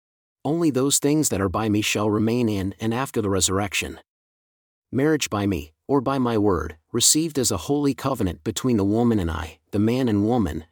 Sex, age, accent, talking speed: male, 40-59, American, 195 wpm